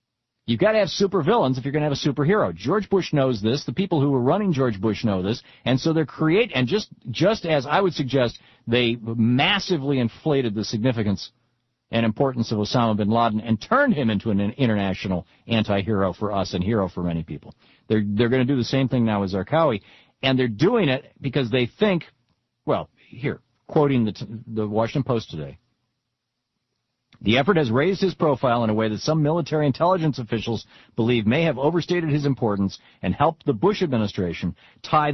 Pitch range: 110-150 Hz